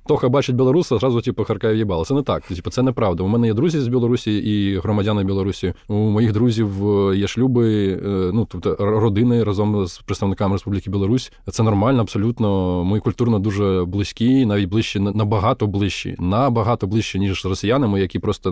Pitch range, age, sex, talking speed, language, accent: 100-120 Hz, 20-39, male, 180 wpm, Ukrainian, native